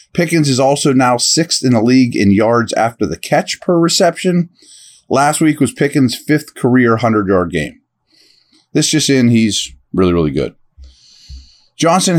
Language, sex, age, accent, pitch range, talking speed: English, male, 30-49, American, 115-150 Hz, 155 wpm